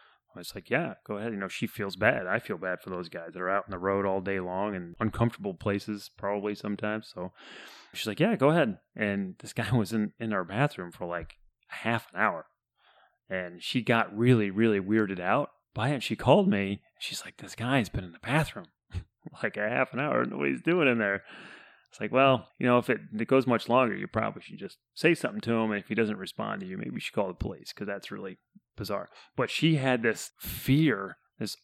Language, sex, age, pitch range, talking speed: English, male, 30-49, 100-120 Hz, 230 wpm